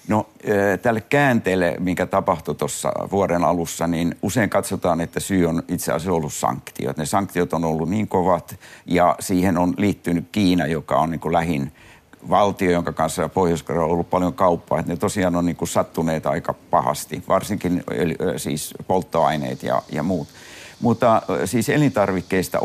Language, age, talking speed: Finnish, 60-79, 160 wpm